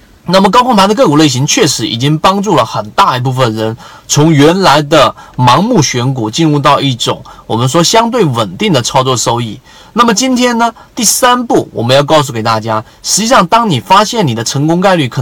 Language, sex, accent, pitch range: Chinese, male, native, 125-175 Hz